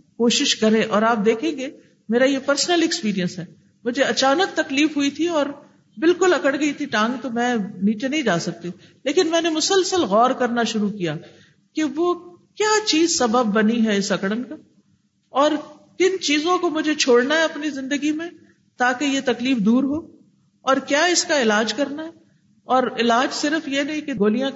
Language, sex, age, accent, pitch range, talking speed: English, female, 50-69, Indian, 215-285 Hz, 170 wpm